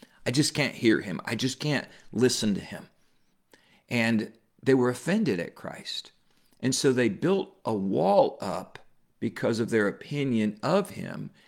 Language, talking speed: English, 155 wpm